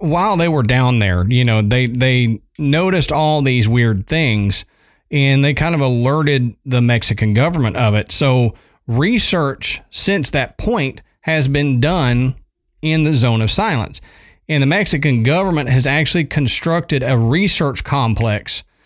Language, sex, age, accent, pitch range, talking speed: English, male, 40-59, American, 115-160 Hz, 150 wpm